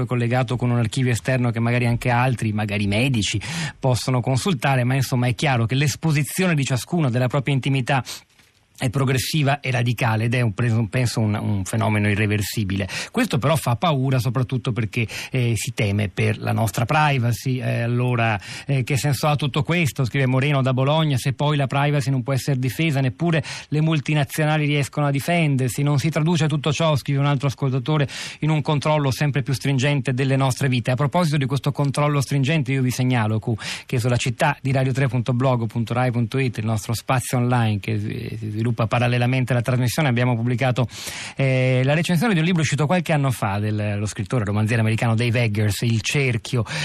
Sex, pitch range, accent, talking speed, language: male, 115-140 Hz, native, 175 wpm, Italian